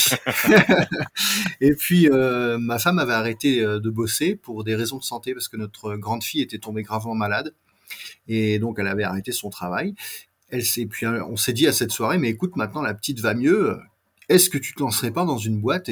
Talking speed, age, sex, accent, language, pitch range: 210 wpm, 30-49, male, French, French, 110-140 Hz